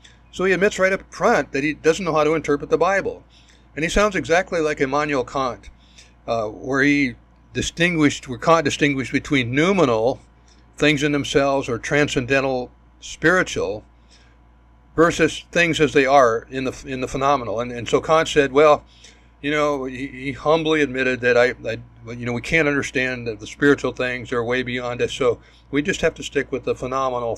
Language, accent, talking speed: English, American, 180 wpm